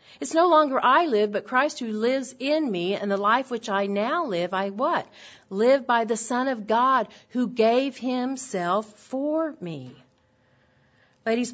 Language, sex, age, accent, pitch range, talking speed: English, female, 50-69, American, 175-245 Hz, 165 wpm